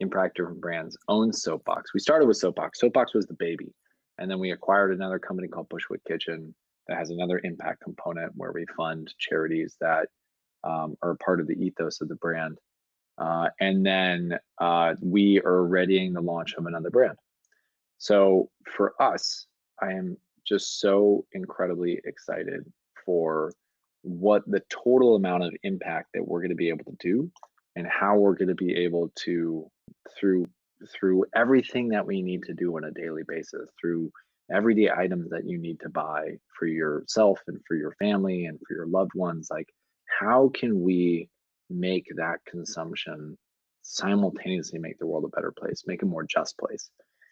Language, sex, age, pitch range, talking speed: English, male, 20-39, 85-100 Hz, 170 wpm